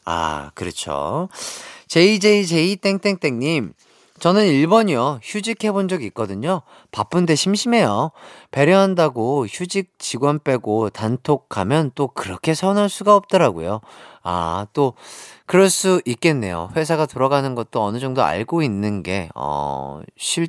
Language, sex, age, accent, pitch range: Korean, male, 40-59, native, 120-185 Hz